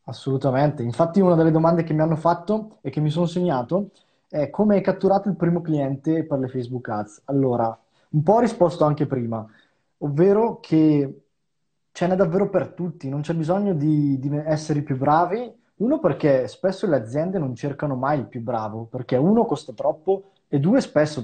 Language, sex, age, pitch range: Italian, male, 20-39, 130-175 Hz